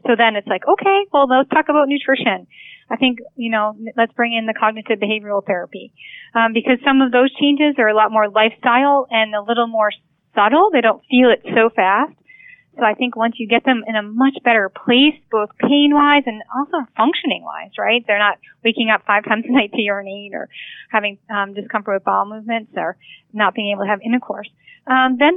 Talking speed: 205 wpm